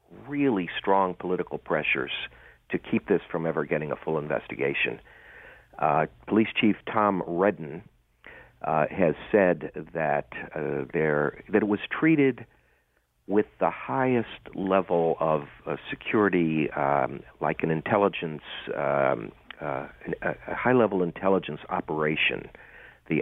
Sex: male